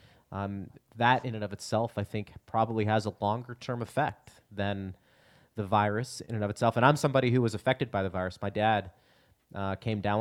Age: 30-49